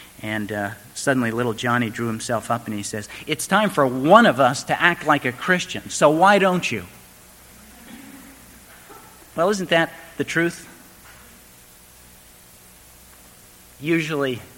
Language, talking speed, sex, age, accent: English, 130 wpm, male, 50-69, American